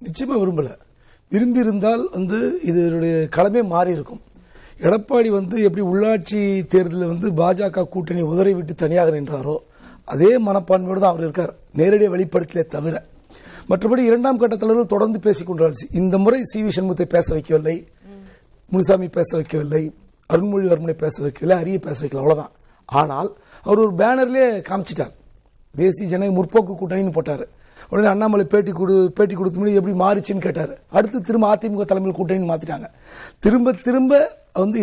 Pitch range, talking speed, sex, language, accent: 175-220 Hz, 120 wpm, male, Tamil, native